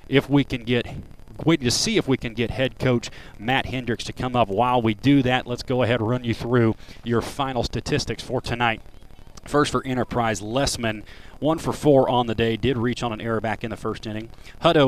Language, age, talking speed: English, 30-49, 220 wpm